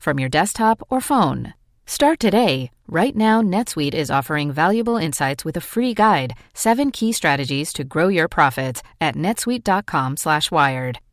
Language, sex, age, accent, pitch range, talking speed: English, female, 30-49, American, 135-200 Hz, 150 wpm